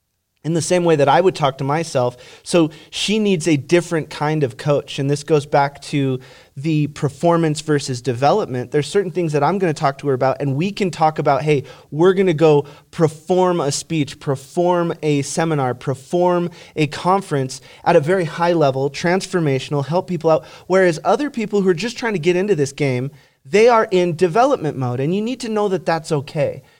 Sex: male